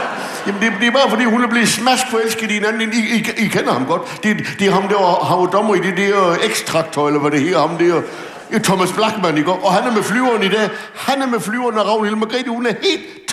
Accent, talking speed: German, 250 wpm